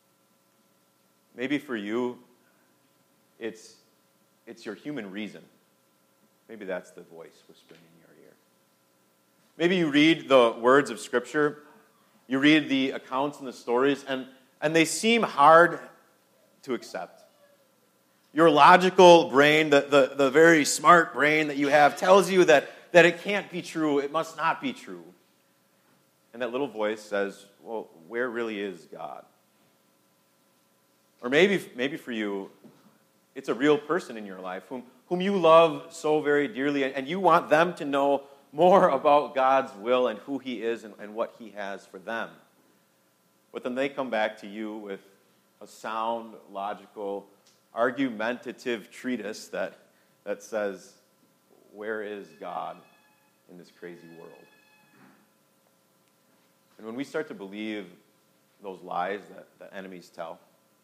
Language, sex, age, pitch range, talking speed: English, male, 30-49, 100-155 Hz, 145 wpm